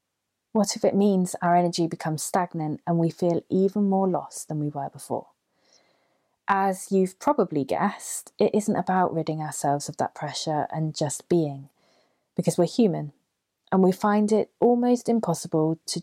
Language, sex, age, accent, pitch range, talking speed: English, female, 20-39, British, 155-195 Hz, 160 wpm